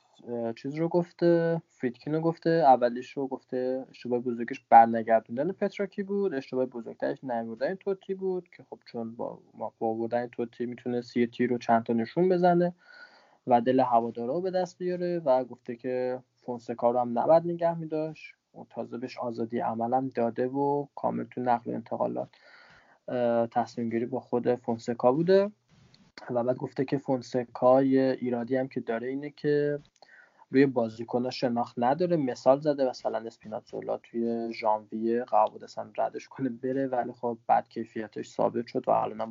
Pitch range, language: 120-150 Hz, Persian